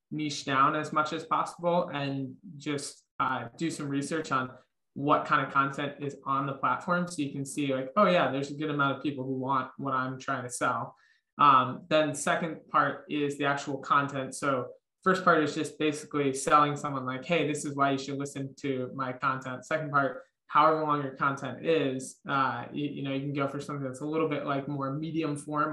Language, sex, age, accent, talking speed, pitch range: English, male, 20-39, American, 210 wpm, 140-155 Hz